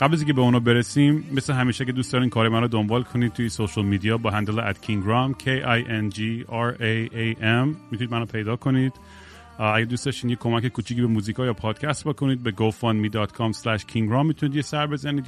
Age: 30-49